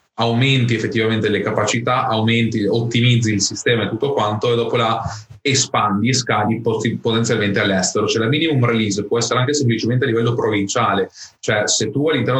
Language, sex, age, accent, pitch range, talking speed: Italian, male, 30-49, native, 110-130 Hz, 165 wpm